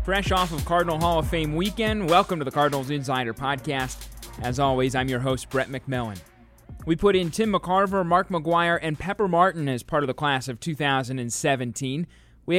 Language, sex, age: English, male, 20-39